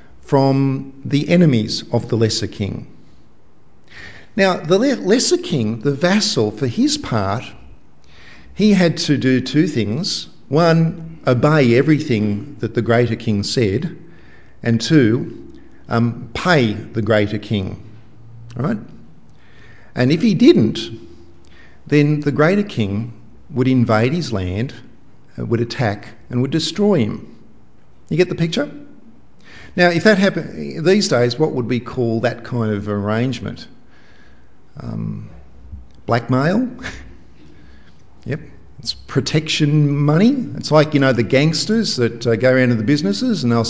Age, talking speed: 50-69, 130 wpm